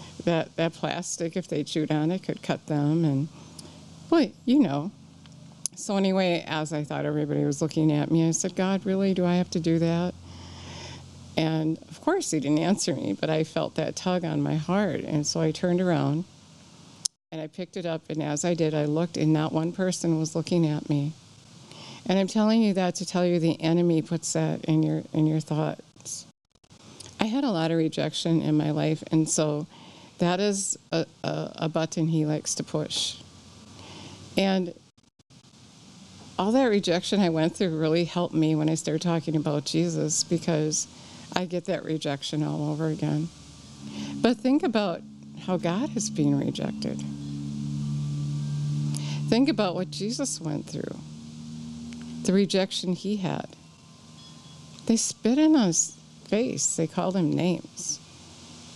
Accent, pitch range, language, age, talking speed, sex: American, 150-180 Hz, English, 50-69, 165 wpm, female